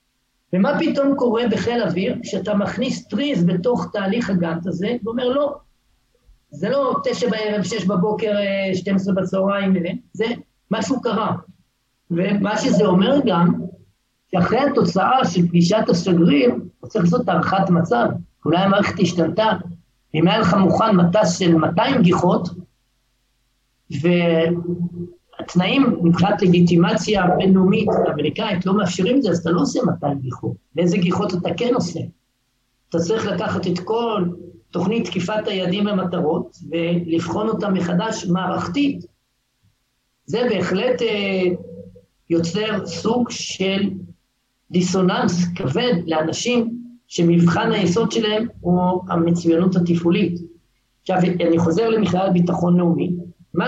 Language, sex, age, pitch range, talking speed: Hebrew, male, 50-69, 170-215 Hz, 120 wpm